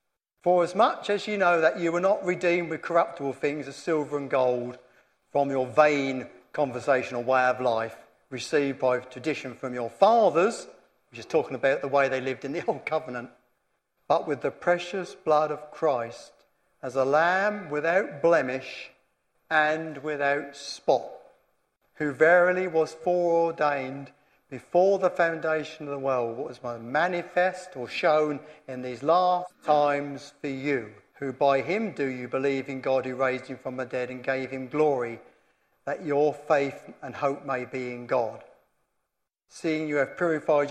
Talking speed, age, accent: 160 wpm, 50-69, British